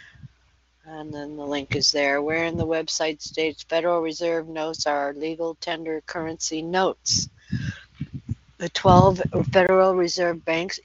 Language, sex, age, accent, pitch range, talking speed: English, female, 60-79, American, 145-170 Hz, 135 wpm